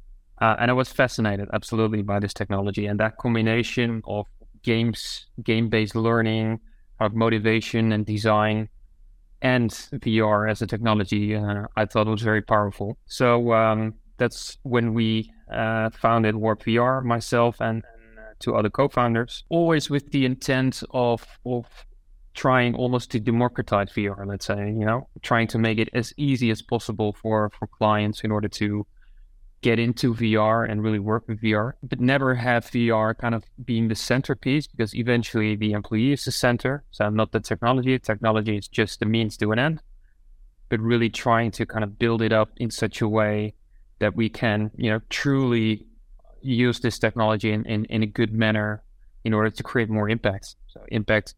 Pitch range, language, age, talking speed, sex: 105-120 Hz, English, 20-39, 170 wpm, male